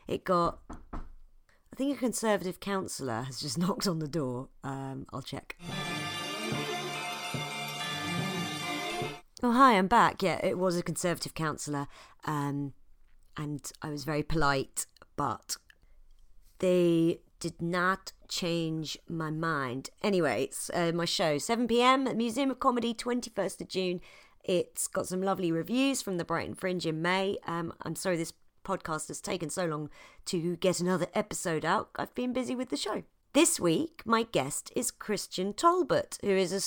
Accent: British